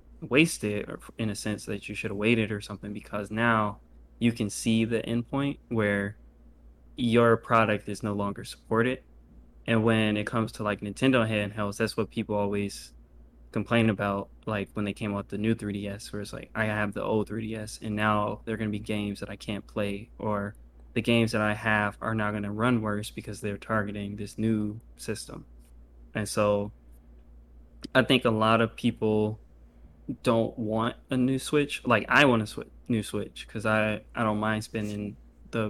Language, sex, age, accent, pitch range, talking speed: English, male, 20-39, American, 100-110 Hz, 185 wpm